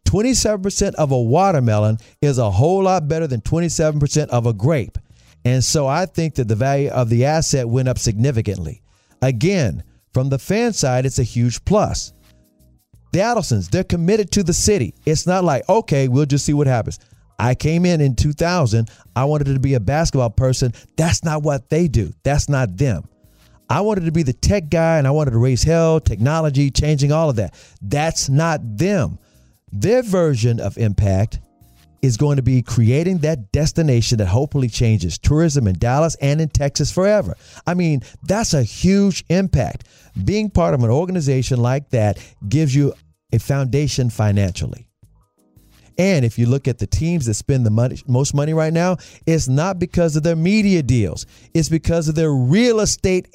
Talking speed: 180 wpm